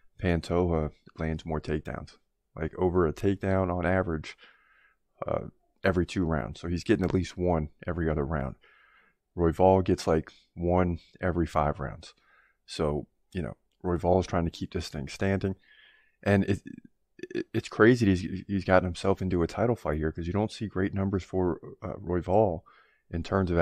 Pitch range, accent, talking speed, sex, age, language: 85-95 Hz, American, 170 wpm, male, 20-39, English